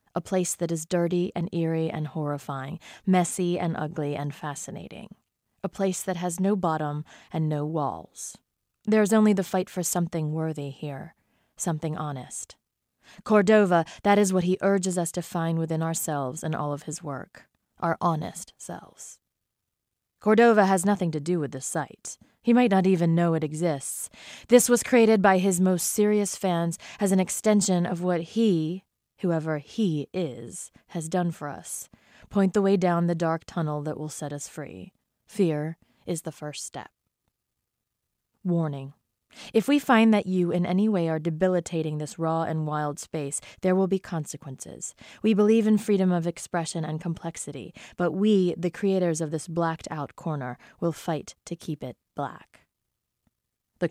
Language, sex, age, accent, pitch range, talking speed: English, female, 20-39, American, 155-190 Hz, 165 wpm